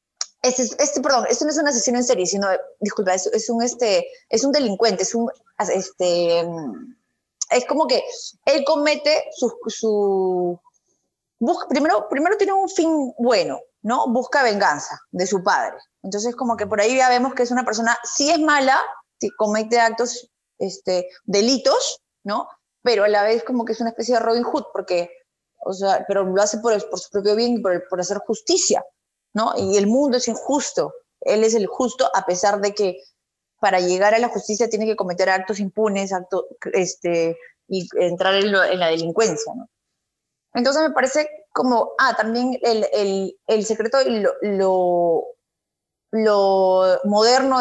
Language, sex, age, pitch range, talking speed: Spanish, female, 20-39, 195-250 Hz, 165 wpm